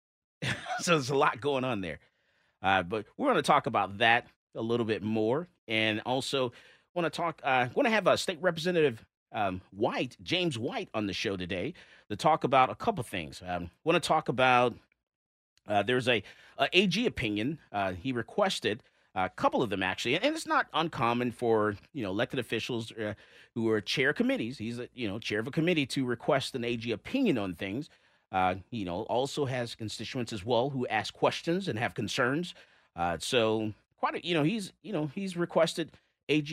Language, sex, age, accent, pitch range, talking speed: English, male, 30-49, American, 110-160 Hz, 195 wpm